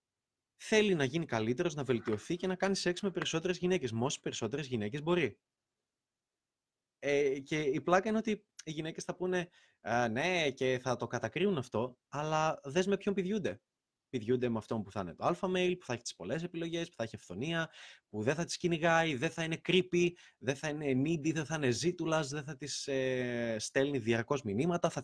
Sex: male